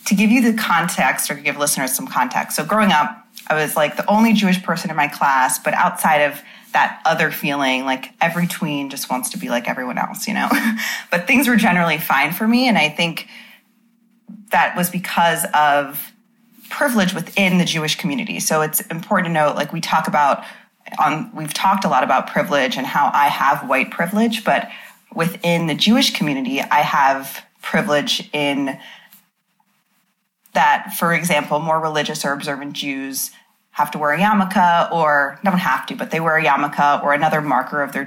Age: 30-49